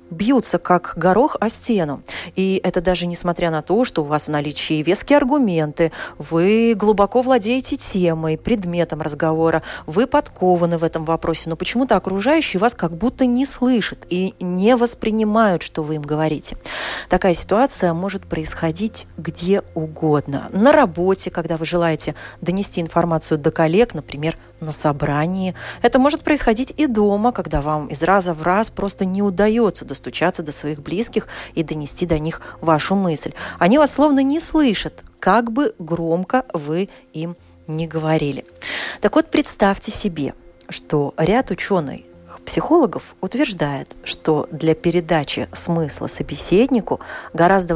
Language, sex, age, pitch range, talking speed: Russian, female, 30-49, 160-215 Hz, 140 wpm